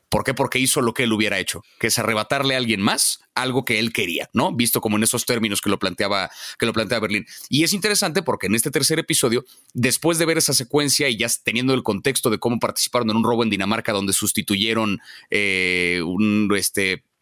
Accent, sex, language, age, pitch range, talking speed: Mexican, male, Spanish, 30-49, 105-140 Hz, 220 wpm